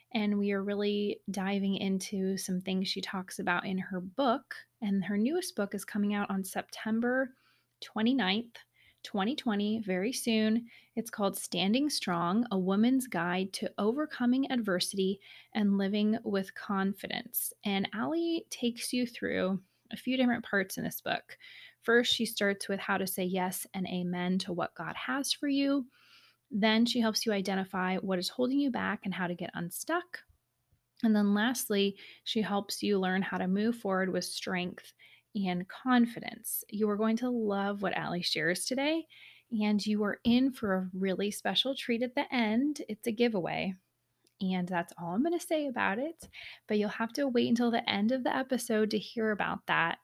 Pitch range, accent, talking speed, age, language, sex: 195-245 Hz, American, 175 wpm, 20-39, English, female